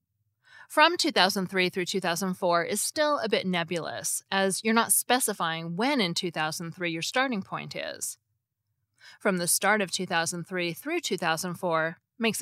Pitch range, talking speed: 160-215 Hz, 135 wpm